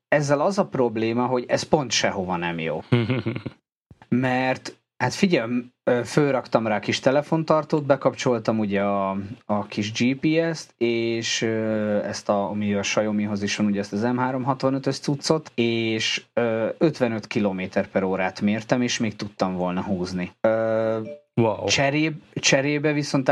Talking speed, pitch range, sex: 130 wpm, 105-140 Hz, male